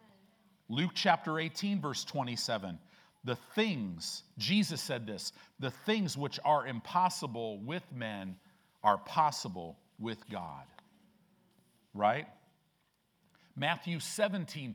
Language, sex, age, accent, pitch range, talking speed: English, male, 50-69, American, 120-175 Hz, 100 wpm